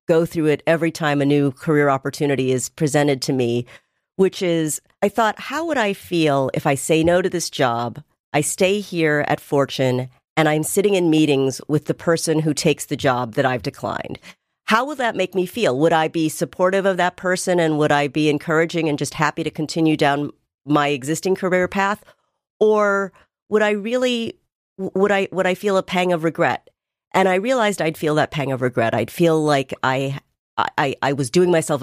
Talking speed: 200 wpm